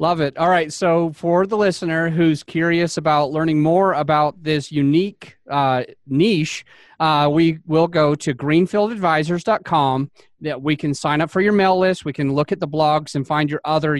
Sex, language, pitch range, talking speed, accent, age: male, English, 135-165 Hz, 185 wpm, American, 30-49